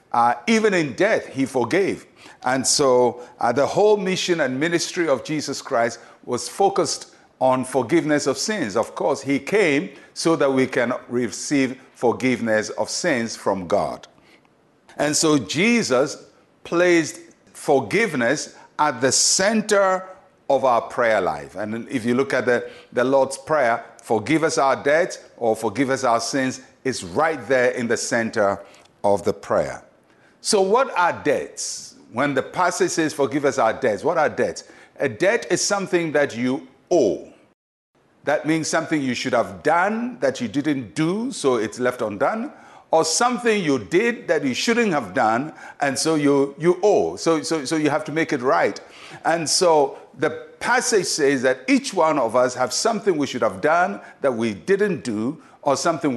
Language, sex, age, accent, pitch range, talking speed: English, male, 50-69, Nigerian, 125-180 Hz, 170 wpm